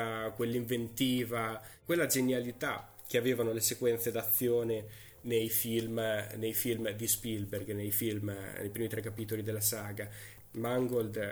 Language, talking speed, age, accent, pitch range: Italian, 120 wpm, 20-39, native, 110-125 Hz